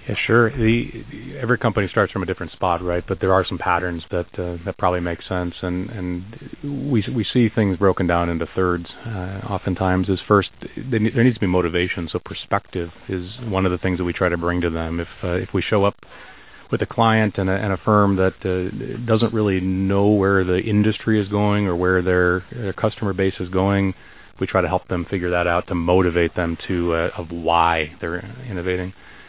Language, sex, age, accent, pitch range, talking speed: English, male, 30-49, American, 90-105 Hz, 215 wpm